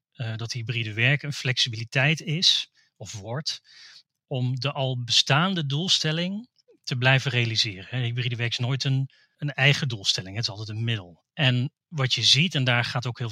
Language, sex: Dutch, male